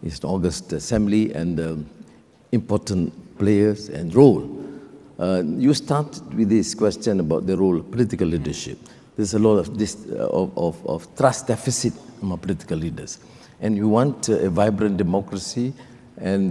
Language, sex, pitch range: English, male, 100-130 Hz